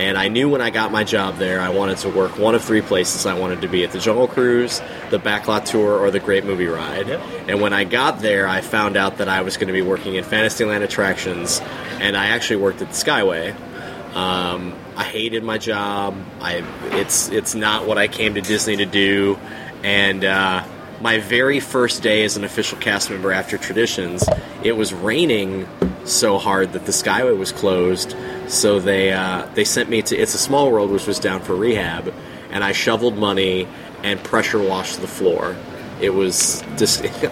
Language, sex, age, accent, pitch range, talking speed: English, male, 20-39, American, 95-110 Hz, 200 wpm